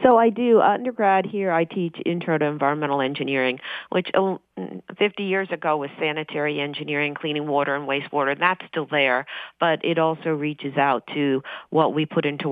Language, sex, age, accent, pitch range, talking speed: English, female, 40-59, American, 135-170 Hz, 175 wpm